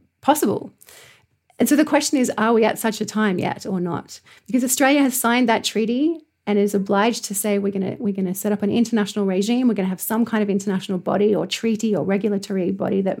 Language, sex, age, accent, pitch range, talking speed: English, female, 30-49, Australian, 195-240 Hz, 235 wpm